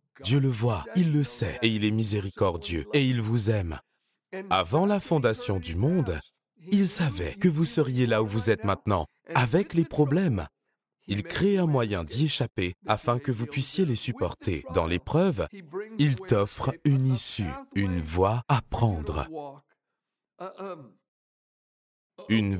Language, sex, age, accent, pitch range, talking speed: French, male, 30-49, French, 100-145 Hz, 145 wpm